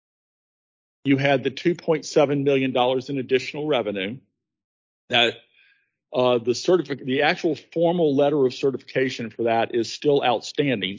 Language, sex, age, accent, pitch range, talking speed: English, male, 50-69, American, 115-140 Hz, 120 wpm